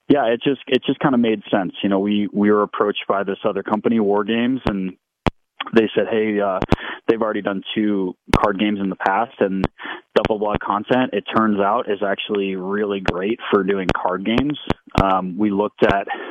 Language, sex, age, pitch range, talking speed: English, male, 20-39, 95-115 Hz, 200 wpm